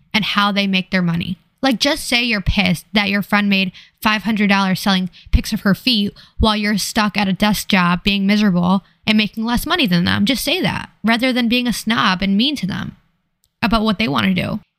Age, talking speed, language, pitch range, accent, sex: 10-29, 220 wpm, English, 190-230 Hz, American, female